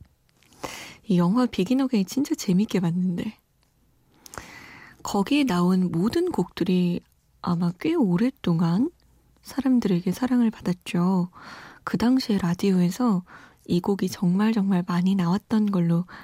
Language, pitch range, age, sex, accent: Korean, 175-220 Hz, 20-39, female, native